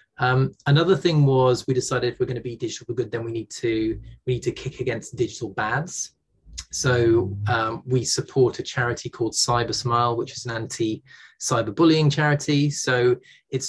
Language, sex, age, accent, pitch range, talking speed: English, male, 20-39, British, 115-135 Hz, 185 wpm